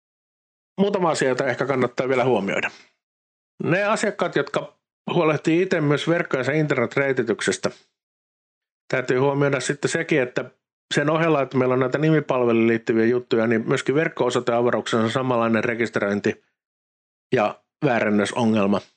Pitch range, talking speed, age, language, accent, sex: 115-140 Hz, 115 wpm, 50-69, Finnish, native, male